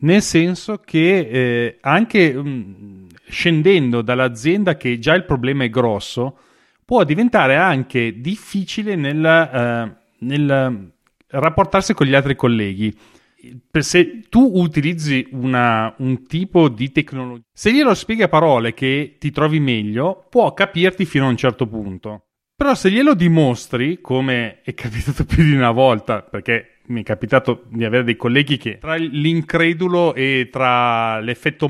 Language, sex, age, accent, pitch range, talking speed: Italian, male, 30-49, native, 125-175 Hz, 145 wpm